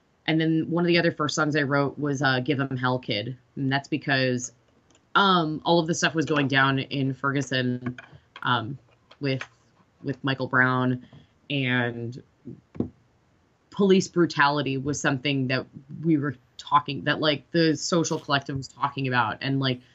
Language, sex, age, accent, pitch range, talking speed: English, female, 20-39, American, 130-160 Hz, 160 wpm